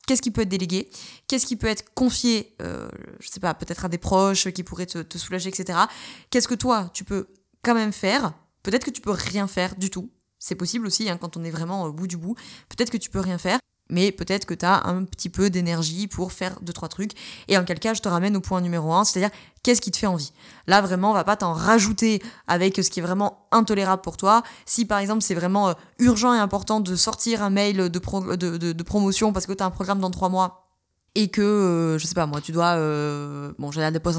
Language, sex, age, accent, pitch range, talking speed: French, female, 20-39, French, 175-215 Hz, 250 wpm